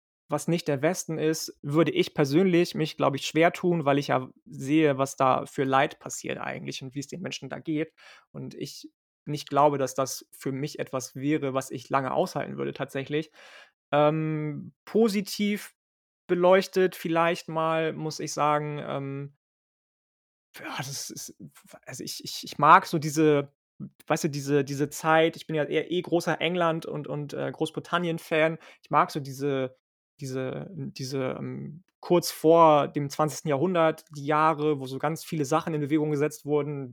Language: German